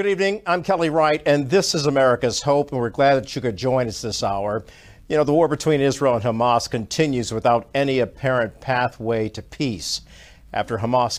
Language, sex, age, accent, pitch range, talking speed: English, male, 50-69, American, 115-145 Hz, 200 wpm